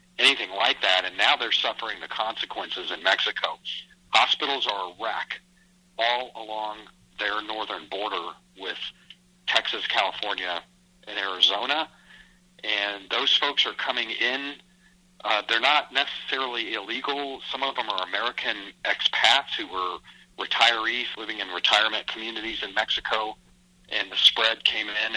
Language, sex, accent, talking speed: English, male, American, 135 wpm